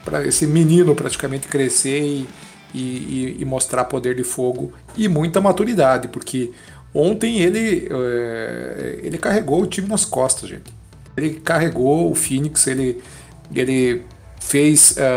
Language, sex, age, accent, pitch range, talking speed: Portuguese, male, 50-69, Brazilian, 125-160 Hz, 125 wpm